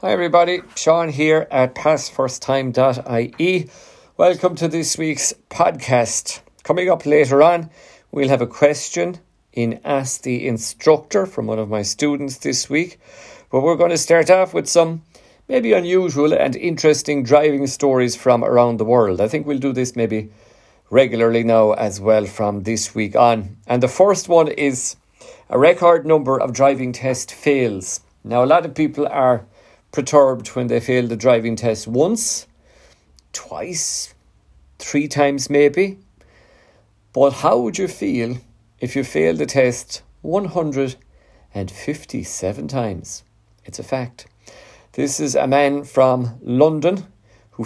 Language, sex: English, male